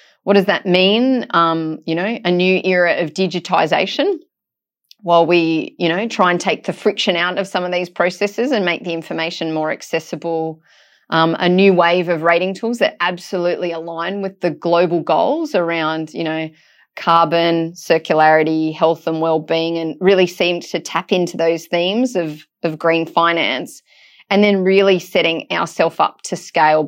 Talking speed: 165 wpm